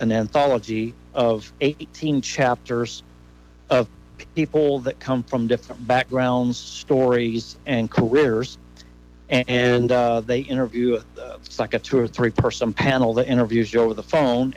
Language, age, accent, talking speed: English, 50-69, American, 140 wpm